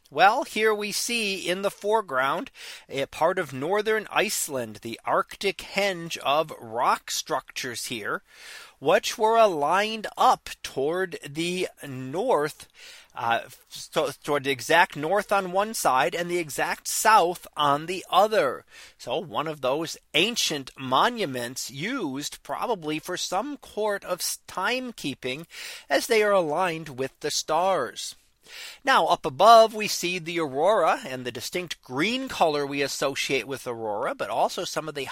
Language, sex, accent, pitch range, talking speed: English, male, American, 140-200 Hz, 140 wpm